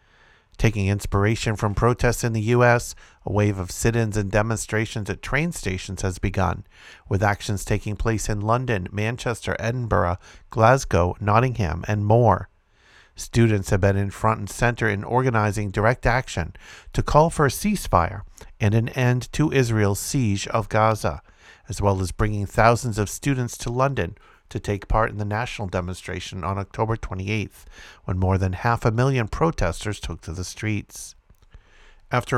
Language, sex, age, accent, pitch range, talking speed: English, male, 50-69, American, 100-115 Hz, 160 wpm